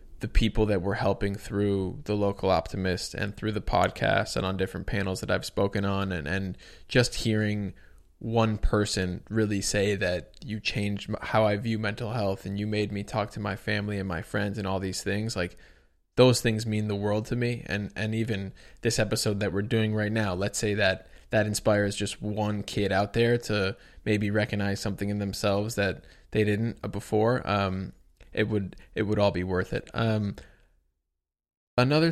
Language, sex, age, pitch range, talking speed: English, male, 20-39, 100-115 Hz, 190 wpm